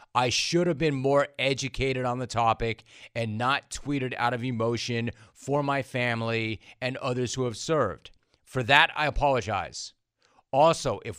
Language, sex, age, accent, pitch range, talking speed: English, male, 40-59, American, 110-130 Hz, 155 wpm